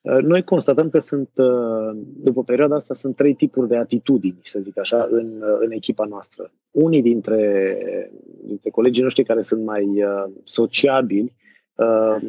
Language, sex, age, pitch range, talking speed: Romanian, male, 20-39, 115-140 Hz, 135 wpm